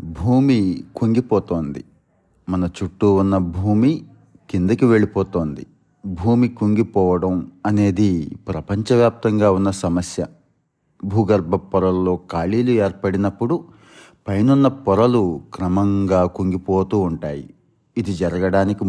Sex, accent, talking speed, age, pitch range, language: male, native, 80 wpm, 30-49, 90-115 Hz, Telugu